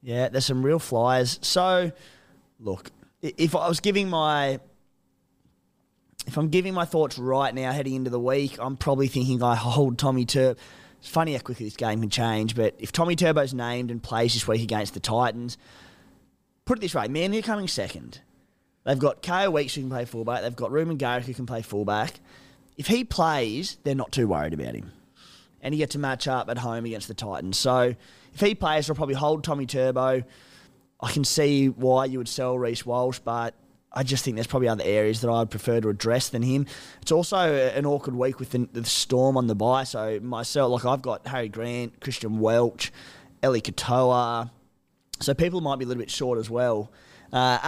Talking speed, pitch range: 205 wpm, 115-140 Hz